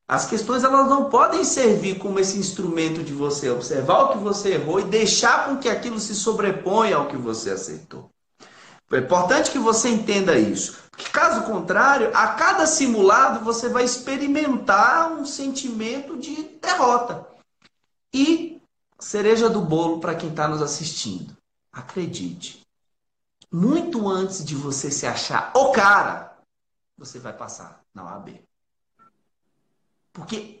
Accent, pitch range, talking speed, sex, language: Brazilian, 185-265 Hz, 140 wpm, male, Portuguese